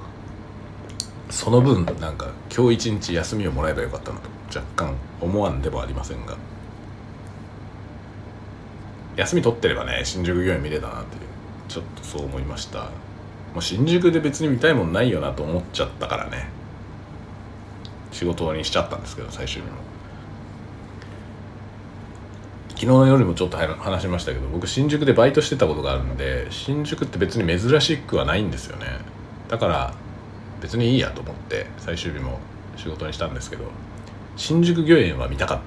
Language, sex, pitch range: Japanese, male, 90-115 Hz